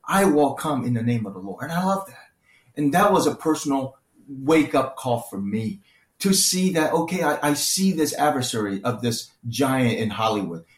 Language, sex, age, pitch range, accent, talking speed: English, male, 30-49, 115-145 Hz, American, 200 wpm